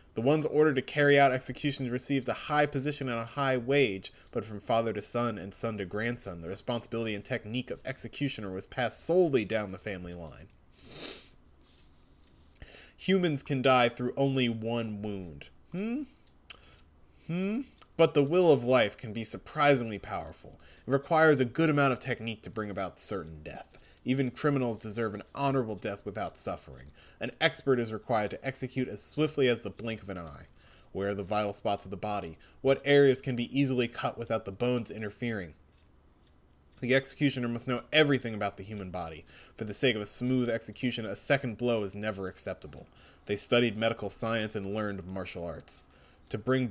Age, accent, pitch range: 20-39, American, 95-130 Hz